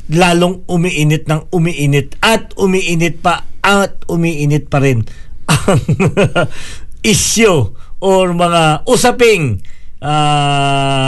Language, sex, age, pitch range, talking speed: Filipino, male, 50-69, 135-170 Hz, 90 wpm